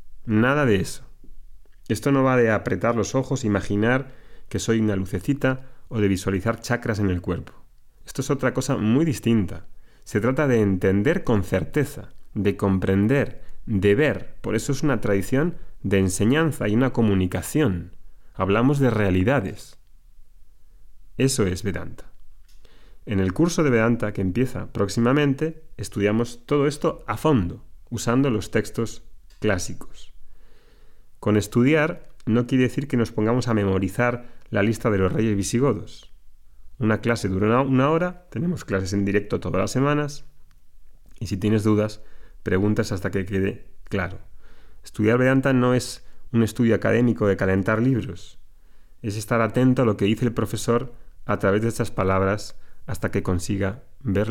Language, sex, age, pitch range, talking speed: Spanish, male, 30-49, 100-120 Hz, 150 wpm